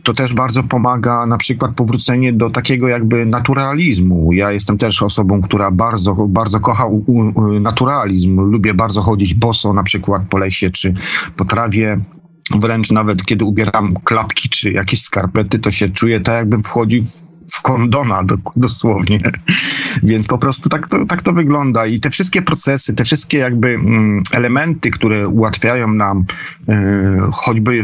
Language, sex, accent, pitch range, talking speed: Polish, male, native, 105-130 Hz, 145 wpm